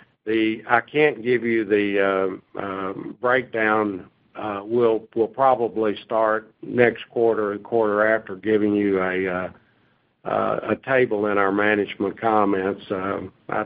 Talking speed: 140 wpm